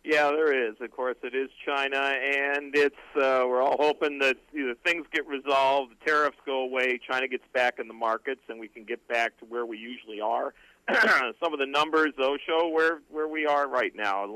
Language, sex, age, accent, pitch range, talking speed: English, male, 50-69, American, 115-140 Hz, 215 wpm